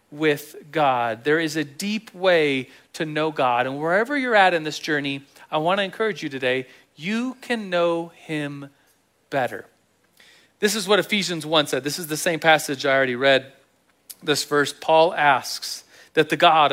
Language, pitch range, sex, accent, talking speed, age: English, 150-205 Hz, male, American, 175 wpm, 40-59